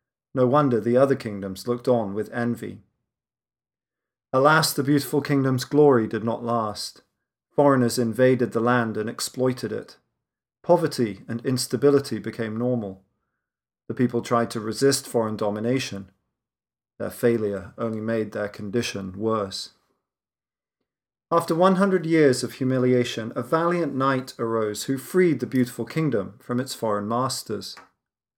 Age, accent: 40-59, British